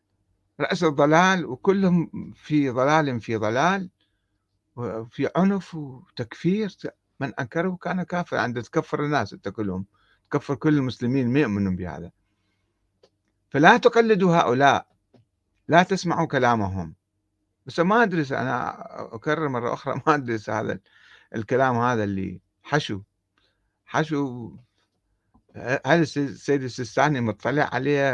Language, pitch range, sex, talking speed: Arabic, 105-150 Hz, male, 105 wpm